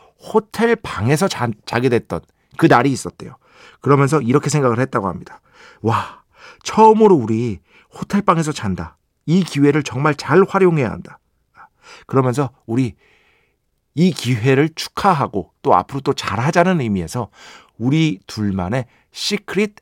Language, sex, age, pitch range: Korean, male, 50-69, 115-170 Hz